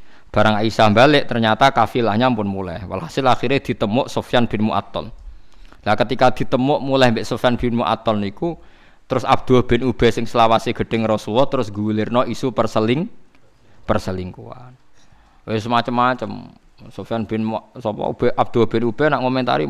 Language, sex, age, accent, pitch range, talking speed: Indonesian, male, 20-39, native, 110-150 Hz, 150 wpm